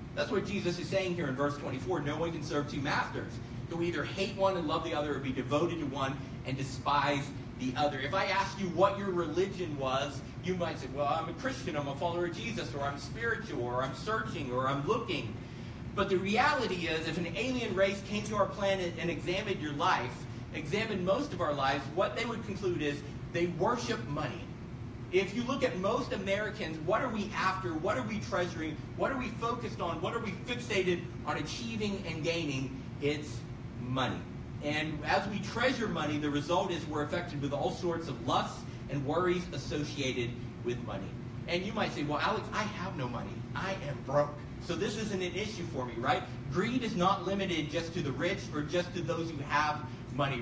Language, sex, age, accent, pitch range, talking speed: English, male, 40-59, American, 130-180 Hz, 210 wpm